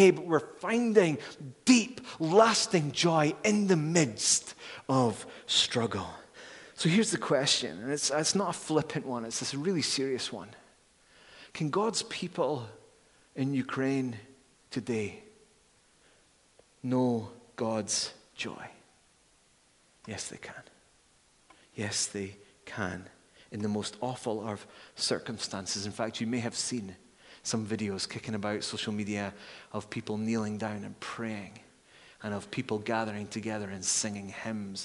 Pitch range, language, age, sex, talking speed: 105-135 Hz, English, 30-49, male, 125 wpm